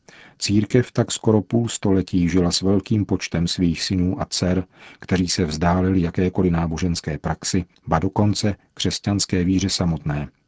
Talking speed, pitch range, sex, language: 135 wpm, 85-95 Hz, male, Czech